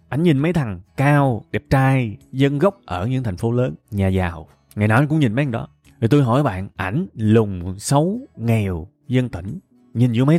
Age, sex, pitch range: 20-39, male, 110-155 Hz